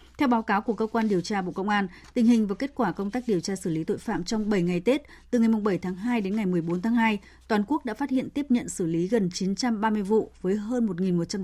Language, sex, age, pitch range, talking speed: Vietnamese, female, 20-39, 185-230 Hz, 280 wpm